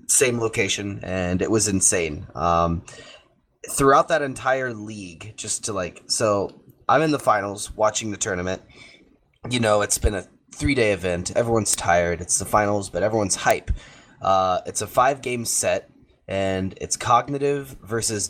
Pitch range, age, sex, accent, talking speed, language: 90-110 Hz, 20-39, male, American, 155 wpm, English